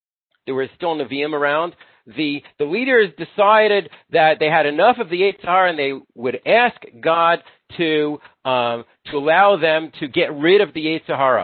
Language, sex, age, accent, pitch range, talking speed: English, male, 40-59, American, 150-215 Hz, 185 wpm